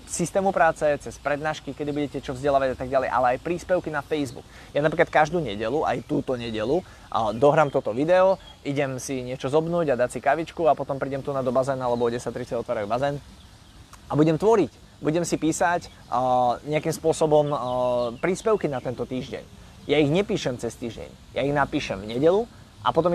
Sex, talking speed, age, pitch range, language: male, 180 wpm, 20-39, 125-165 Hz, Slovak